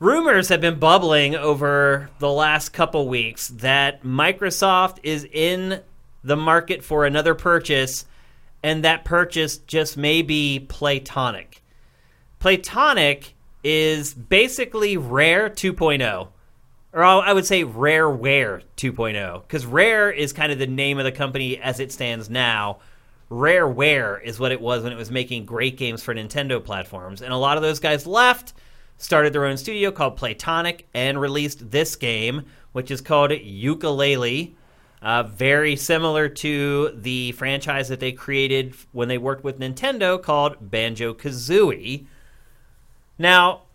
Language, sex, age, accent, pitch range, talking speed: English, male, 30-49, American, 130-165 Hz, 140 wpm